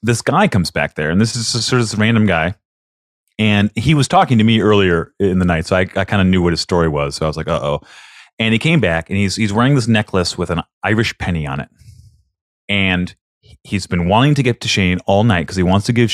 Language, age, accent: English, 30-49, American